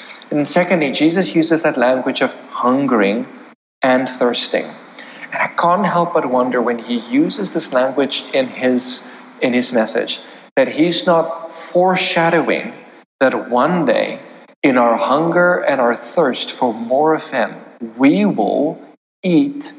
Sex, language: male, English